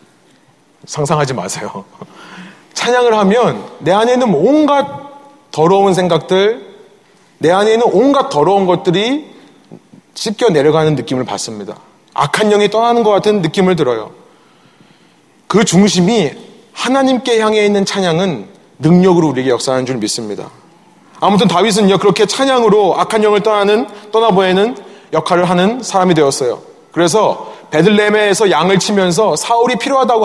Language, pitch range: Korean, 155-220 Hz